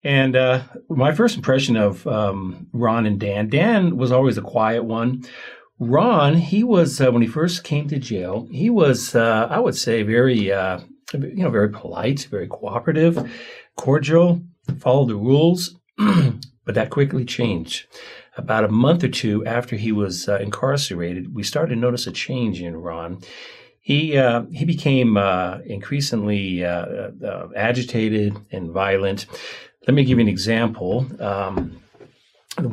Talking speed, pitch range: 155 wpm, 95-130 Hz